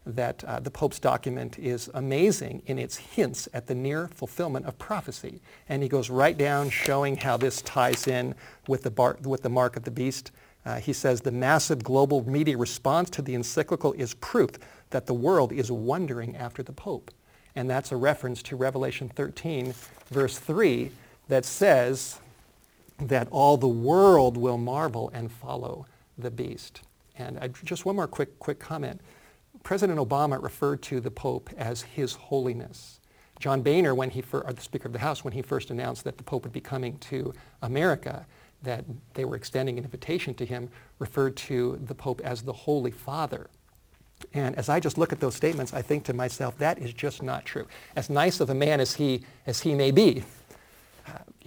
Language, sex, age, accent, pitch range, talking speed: English, male, 50-69, American, 125-145 Hz, 185 wpm